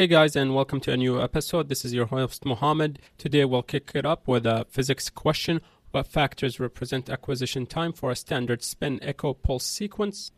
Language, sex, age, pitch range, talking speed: English, male, 30-49, 130-150 Hz, 195 wpm